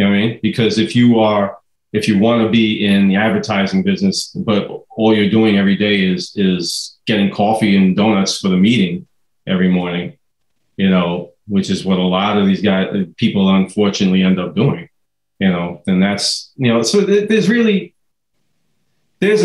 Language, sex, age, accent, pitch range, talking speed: English, male, 30-49, American, 100-115 Hz, 180 wpm